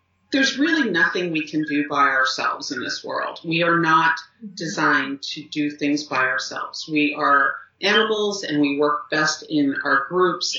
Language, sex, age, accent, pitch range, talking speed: English, female, 40-59, American, 150-205 Hz, 170 wpm